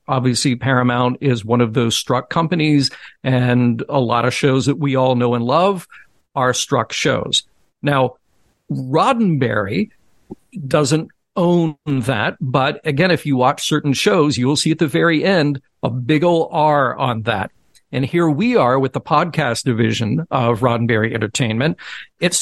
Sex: male